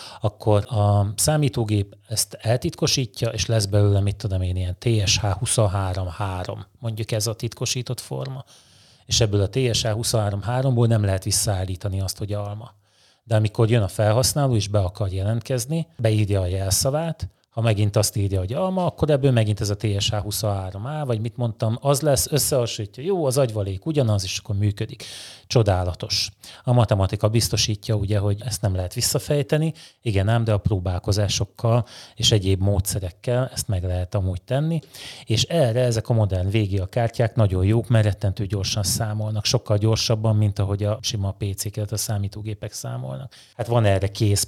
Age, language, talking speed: 30-49, Hungarian, 160 wpm